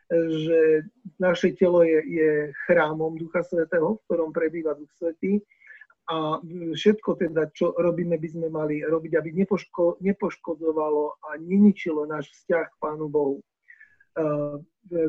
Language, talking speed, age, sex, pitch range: Slovak, 125 wpm, 40-59, male, 155-180 Hz